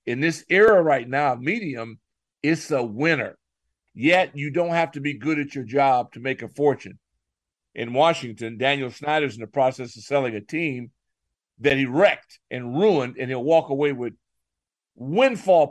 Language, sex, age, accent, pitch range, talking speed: English, male, 50-69, American, 135-195 Hz, 170 wpm